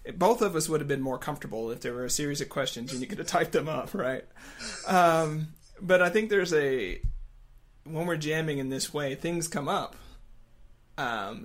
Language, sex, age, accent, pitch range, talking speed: English, male, 30-49, American, 135-165 Hz, 205 wpm